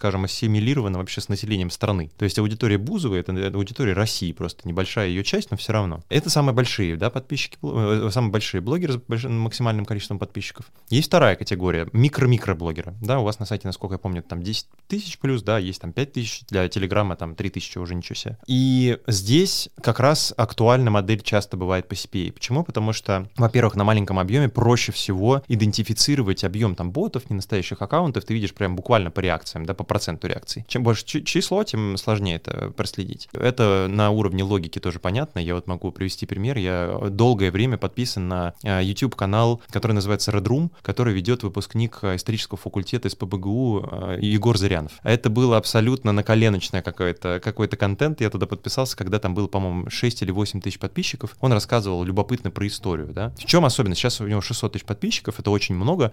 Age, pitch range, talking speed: 20-39, 95-120 Hz, 180 wpm